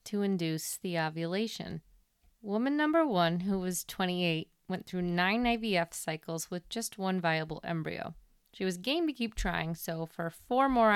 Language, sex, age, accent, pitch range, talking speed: English, female, 30-49, American, 170-215 Hz, 165 wpm